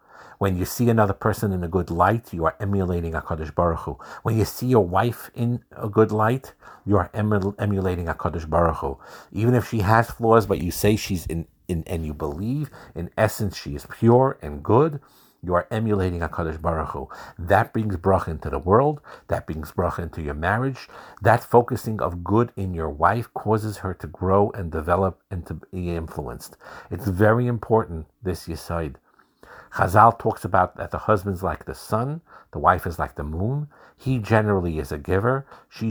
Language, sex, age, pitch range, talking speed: English, male, 50-69, 85-110 Hz, 190 wpm